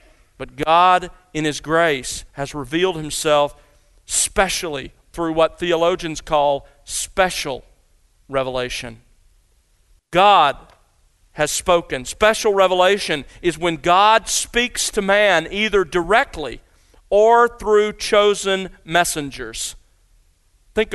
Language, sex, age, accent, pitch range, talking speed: English, male, 40-59, American, 150-205 Hz, 95 wpm